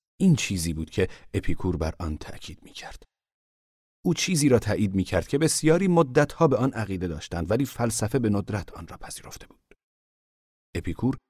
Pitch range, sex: 85-120 Hz, male